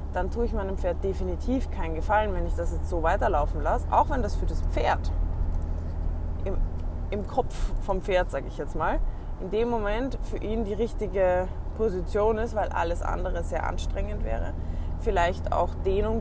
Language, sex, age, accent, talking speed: German, female, 20-39, German, 180 wpm